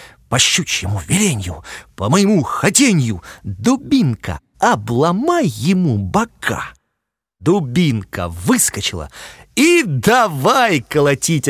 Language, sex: Russian, male